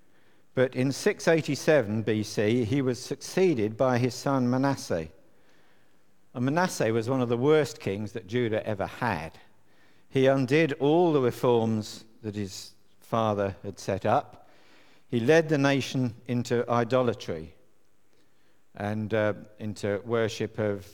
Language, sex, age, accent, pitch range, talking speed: English, male, 50-69, British, 100-125 Hz, 130 wpm